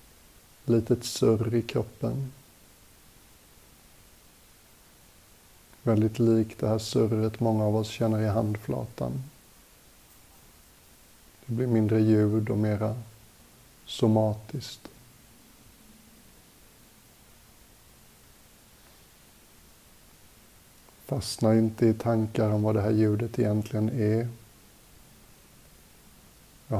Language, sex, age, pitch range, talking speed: Swedish, male, 60-79, 105-115 Hz, 80 wpm